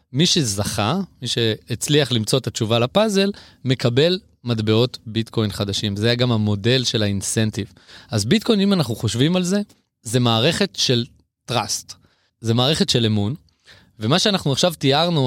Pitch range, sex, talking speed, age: 110-150 Hz, male, 145 wpm, 20-39